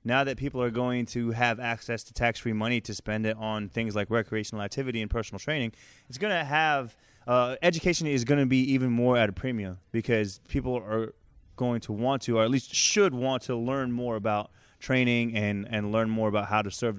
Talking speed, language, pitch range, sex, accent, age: 220 wpm, English, 105-135 Hz, male, American, 20-39